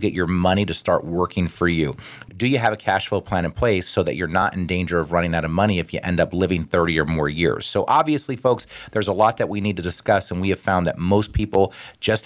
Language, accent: English, American